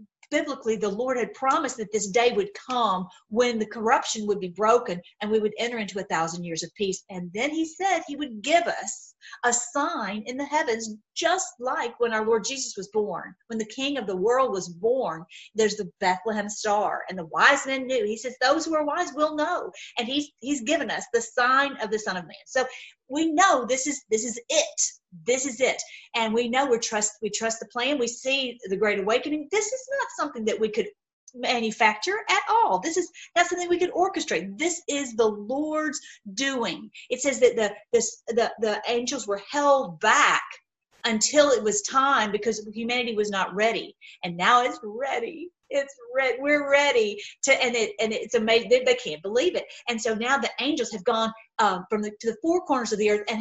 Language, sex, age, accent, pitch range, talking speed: English, female, 40-59, American, 220-295 Hz, 210 wpm